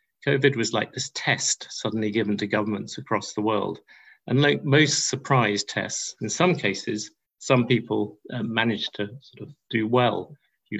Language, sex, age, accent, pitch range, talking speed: English, male, 50-69, British, 105-130 Hz, 165 wpm